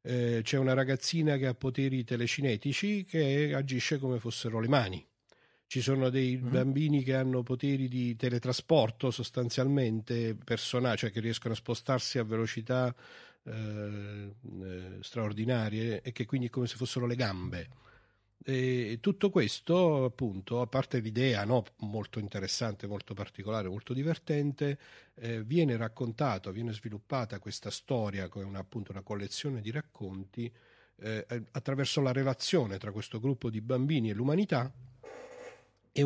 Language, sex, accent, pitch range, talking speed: Italian, male, native, 110-130 Hz, 135 wpm